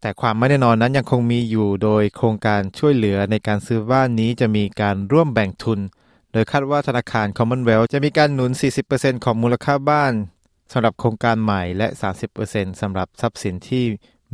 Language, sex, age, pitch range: Thai, male, 20-39, 100-120 Hz